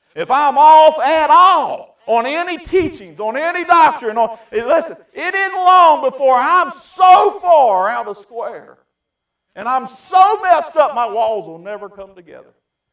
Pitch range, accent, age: 185-285 Hz, American, 50-69